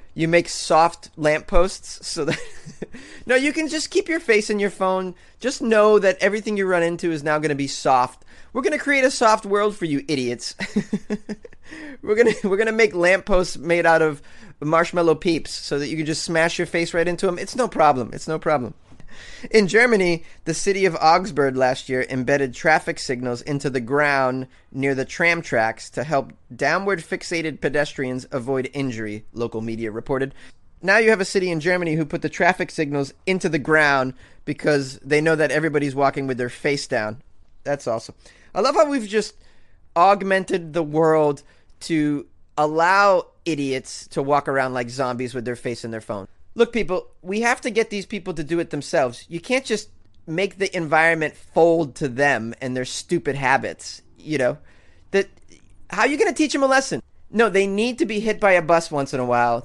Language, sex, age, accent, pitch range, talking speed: English, male, 30-49, American, 140-200 Hz, 190 wpm